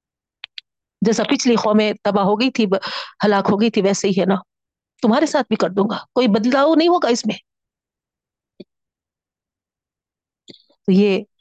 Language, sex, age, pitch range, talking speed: Urdu, female, 50-69, 185-220 Hz, 155 wpm